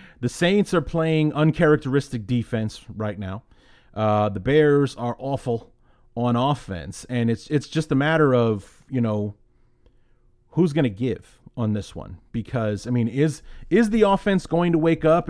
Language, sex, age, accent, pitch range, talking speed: English, male, 30-49, American, 115-140 Hz, 165 wpm